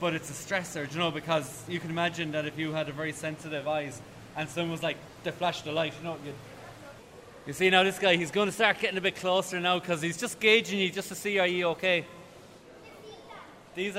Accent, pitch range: Irish, 155-180 Hz